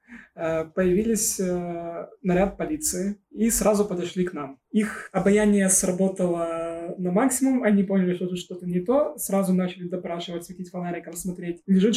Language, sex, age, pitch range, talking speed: Ukrainian, male, 20-39, 175-200 Hz, 140 wpm